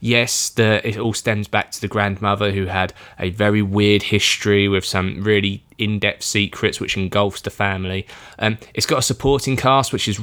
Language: English